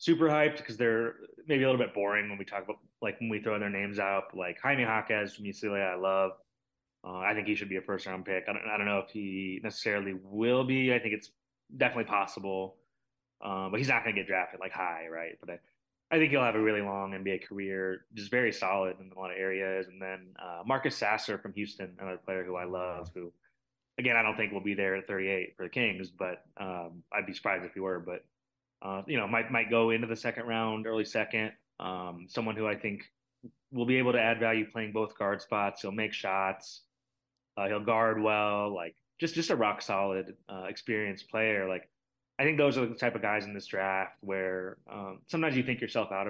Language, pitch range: English, 95-115 Hz